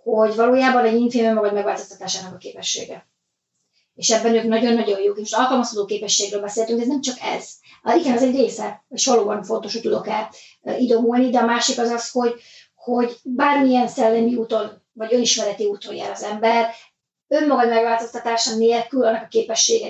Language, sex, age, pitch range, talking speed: Hungarian, female, 30-49, 220-250 Hz, 170 wpm